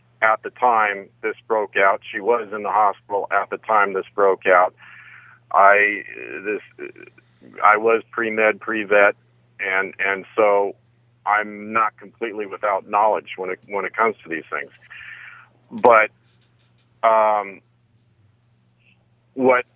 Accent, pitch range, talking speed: American, 100-120 Hz, 130 wpm